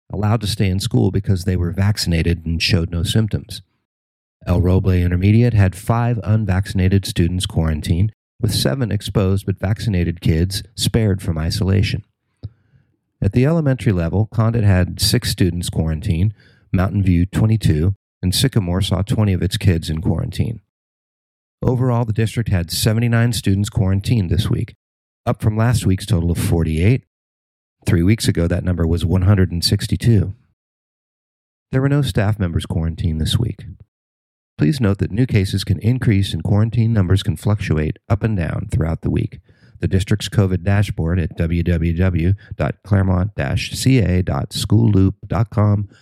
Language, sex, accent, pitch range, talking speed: English, male, American, 90-110 Hz, 140 wpm